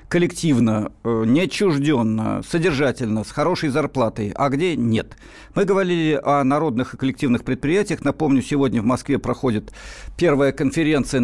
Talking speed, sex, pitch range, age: 125 wpm, male, 125-160 Hz, 50-69